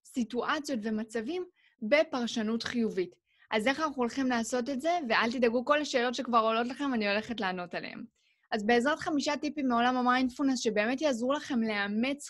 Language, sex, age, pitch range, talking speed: Hebrew, female, 20-39, 225-275 Hz, 155 wpm